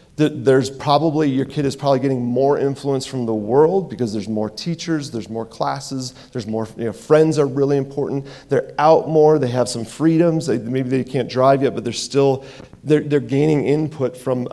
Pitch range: 125-150 Hz